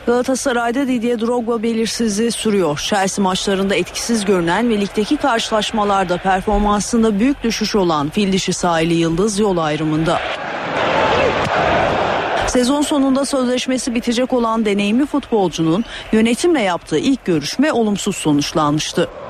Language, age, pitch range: Turkish, 40-59, 175-225 Hz